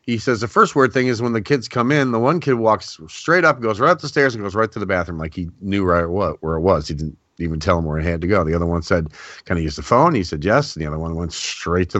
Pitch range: 90-120 Hz